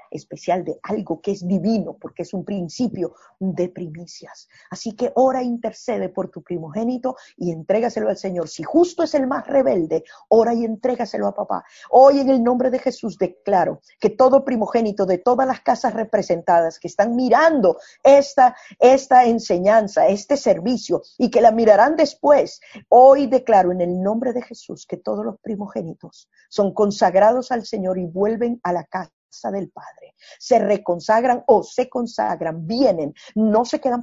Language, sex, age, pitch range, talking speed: Spanish, female, 50-69, 185-255 Hz, 165 wpm